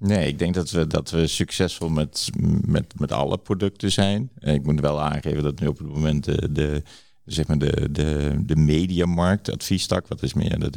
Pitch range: 75-100 Hz